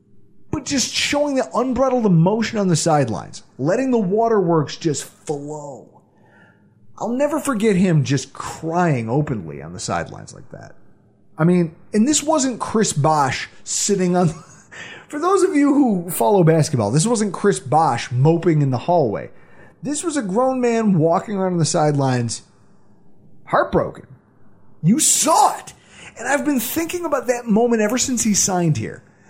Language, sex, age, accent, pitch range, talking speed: English, male, 30-49, American, 155-255 Hz, 155 wpm